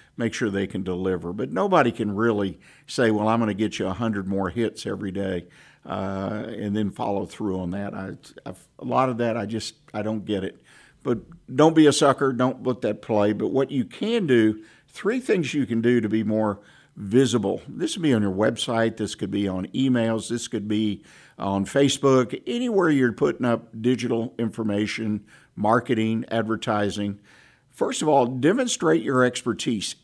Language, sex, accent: English, male, American